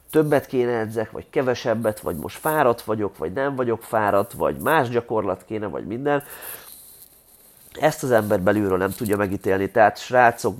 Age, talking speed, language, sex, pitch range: 30-49, 160 wpm, Hungarian, male, 100-125 Hz